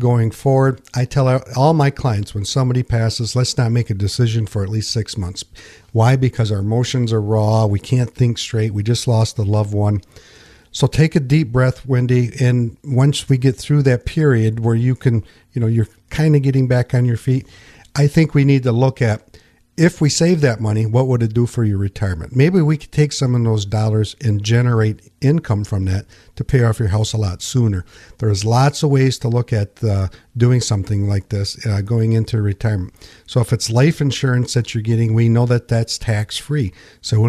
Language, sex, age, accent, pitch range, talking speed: English, male, 50-69, American, 110-130 Hz, 215 wpm